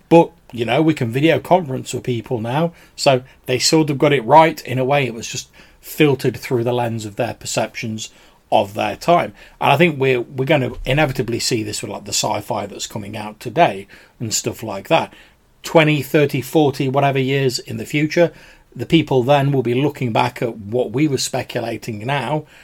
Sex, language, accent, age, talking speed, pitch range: male, English, British, 30-49, 200 wpm, 115-145 Hz